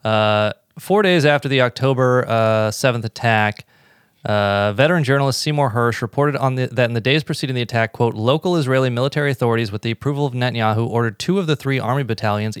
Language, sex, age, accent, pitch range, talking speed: English, male, 30-49, American, 110-130 Hz, 195 wpm